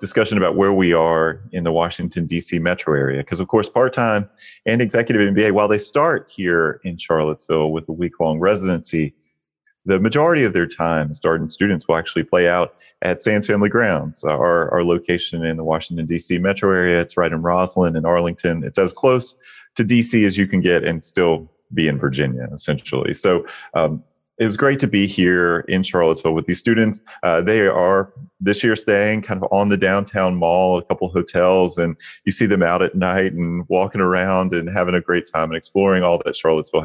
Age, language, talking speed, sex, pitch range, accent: 30-49, English, 195 wpm, male, 80-105 Hz, American